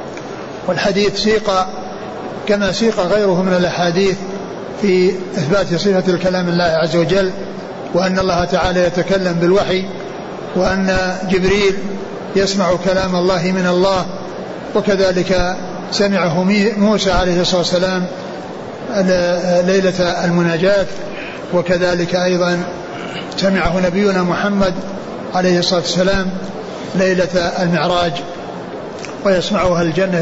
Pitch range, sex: 180-195 Hz, male